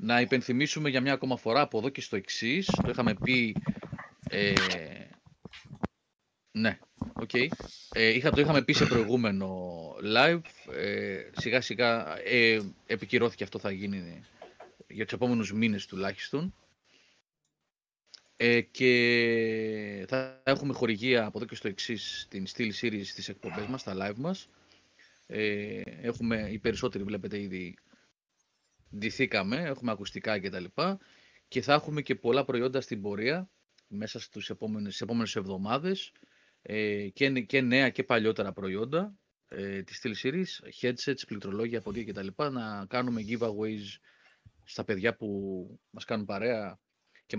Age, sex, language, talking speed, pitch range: 30-49, male, Greek, 135 wpm, 105-130 Hz